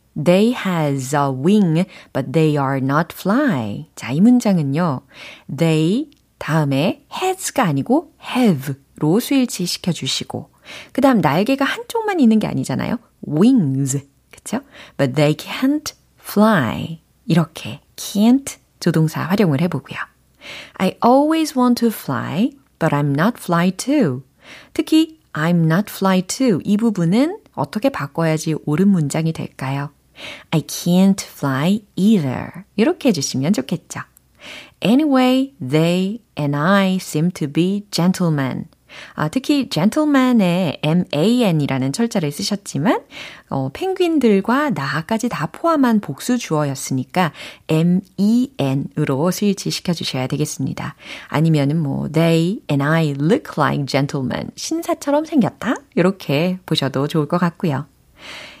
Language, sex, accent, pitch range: Korean, female, native, 150-235 Hz